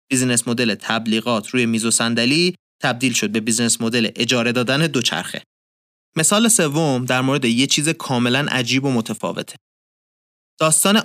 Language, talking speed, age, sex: Persian, 135 wpm, 30-49, male